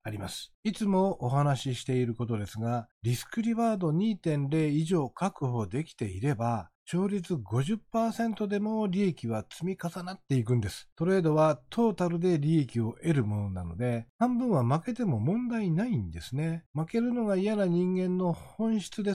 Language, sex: Japanese, male